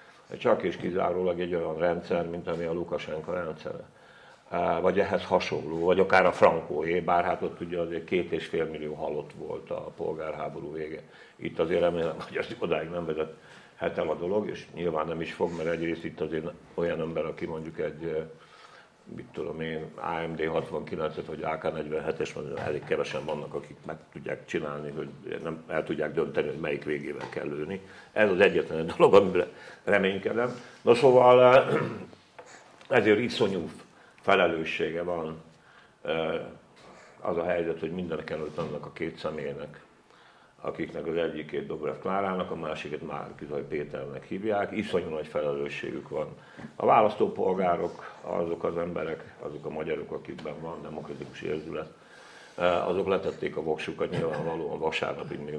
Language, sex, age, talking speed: Hungarian, male, 60-79, 150 wpm